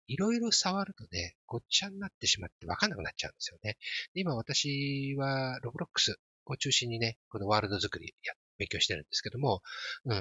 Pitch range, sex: 100-145 Hz, male